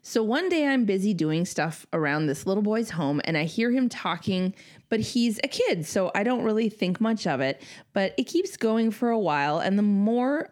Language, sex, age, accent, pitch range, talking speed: English, female, 20-39, American, 185-250 Hz, 220 wpm